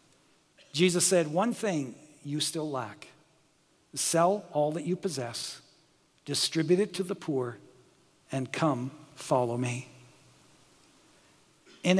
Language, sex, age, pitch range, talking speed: English, male, 60-79, 140-180 Hz, 110 wpm